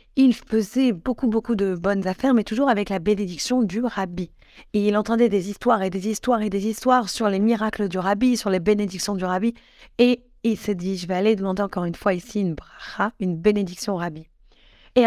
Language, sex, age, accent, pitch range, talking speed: French, female, 30-49, French, 200-250 Hz, 215 wpm